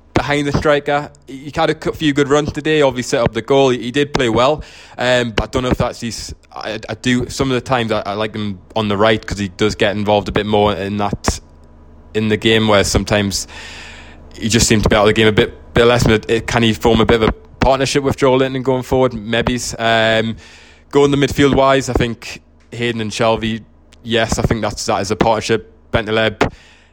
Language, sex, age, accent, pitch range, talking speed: English, male, 20-39, British, 100-120 Hz, 240 wpm